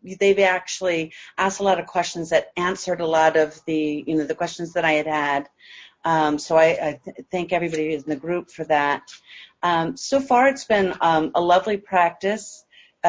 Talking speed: 195 wpm